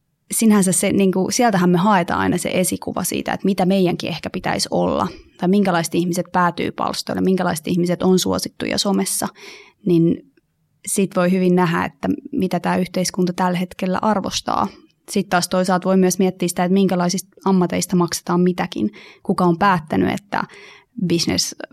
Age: 20-39